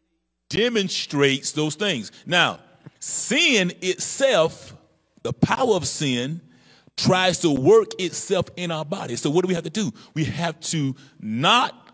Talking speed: 140 wpm